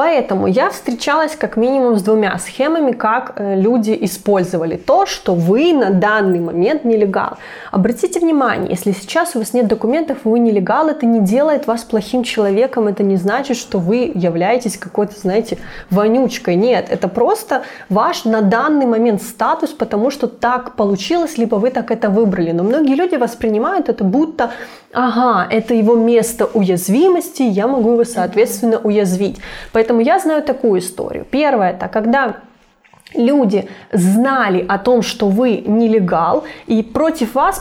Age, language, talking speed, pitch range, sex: 20-39, Russian, 150 wpm, 205-255 Hz, female